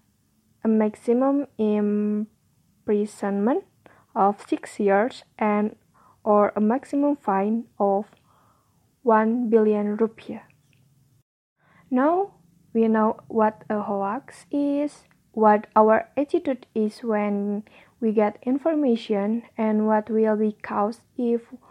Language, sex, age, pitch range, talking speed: English, female, 20-39, 210-265 Hz, 100 wpm